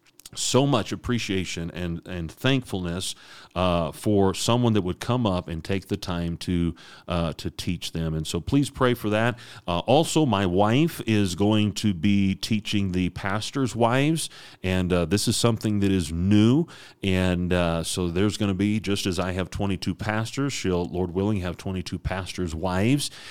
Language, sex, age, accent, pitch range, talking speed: English, male, 40-59, American, 90-110 Hz, 175 wpm